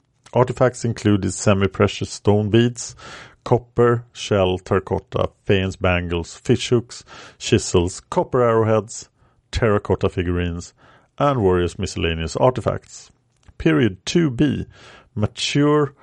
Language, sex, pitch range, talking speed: English, male, 95-120 Hz, 90 wpm